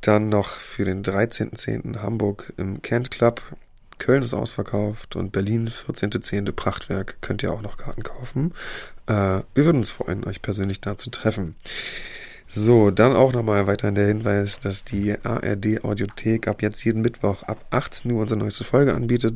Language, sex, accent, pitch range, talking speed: German, male, German, 100-120 Hz, 165 wpm